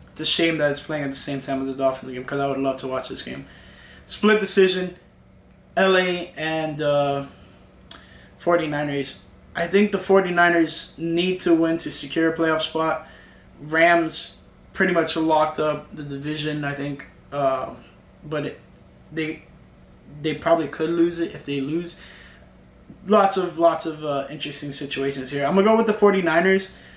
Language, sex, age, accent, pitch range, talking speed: English, male, 20-39, American, 140-165 Hz, 170 wpm